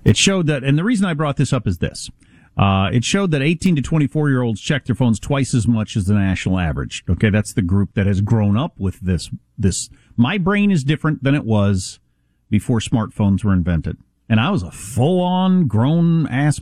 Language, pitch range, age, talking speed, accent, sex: English, 100-145 Hz, 50-69, 205 wpm, American, male